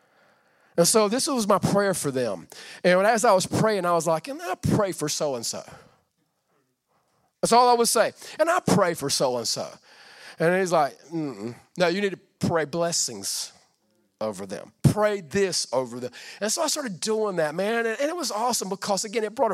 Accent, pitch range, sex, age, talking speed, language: American, 160-215 Hz, male, 40-59, 195 wpm, English